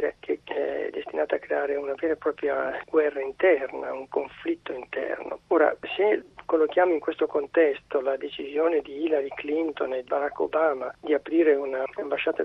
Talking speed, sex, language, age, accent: 150 wpm, male, Italian, 40-59, native